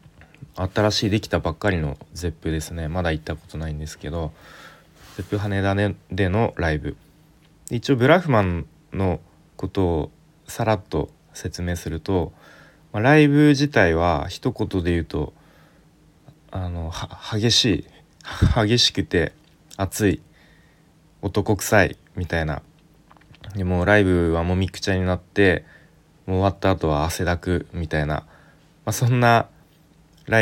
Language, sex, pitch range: Japanese, male, 85-110 Hz